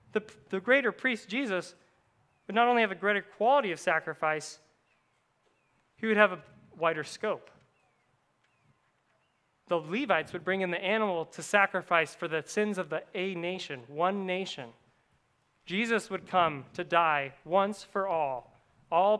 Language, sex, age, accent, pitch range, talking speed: English, male, 20-39, American, 170-220 Hz, 145 wpm